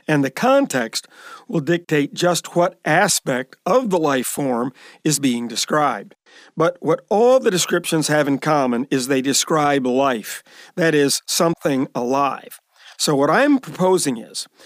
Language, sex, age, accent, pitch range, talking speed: English, male, 50-69, American, 145-190 Hz, 145 wpm